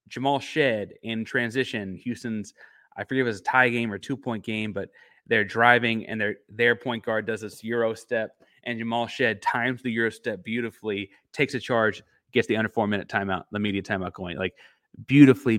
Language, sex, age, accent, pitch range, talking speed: English, male, 30-49, American, 105-125 Hz, 195 wpm